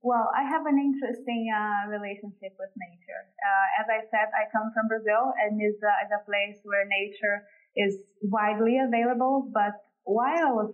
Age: 20-39